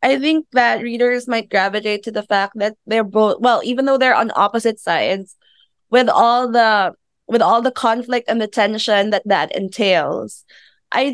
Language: English